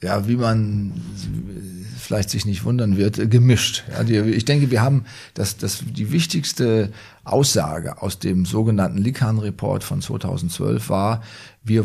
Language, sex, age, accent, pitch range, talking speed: German, male, 40-59, German, 100-125 Hz, 130 wpm